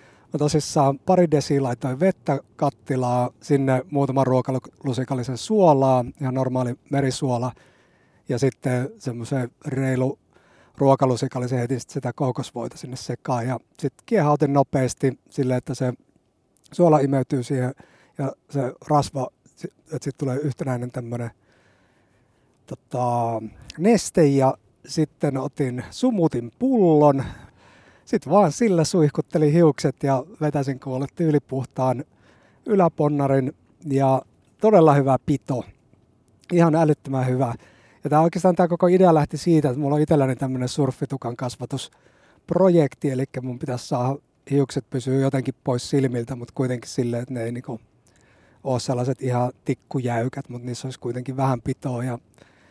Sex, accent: male, native